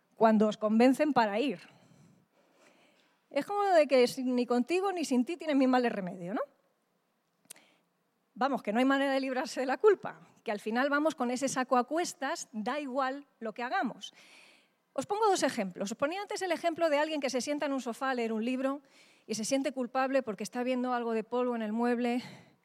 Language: English